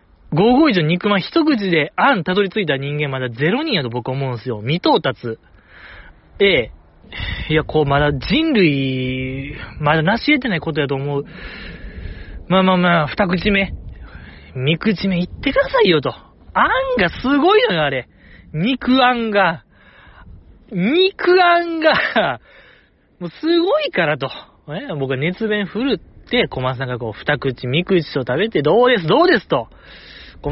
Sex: male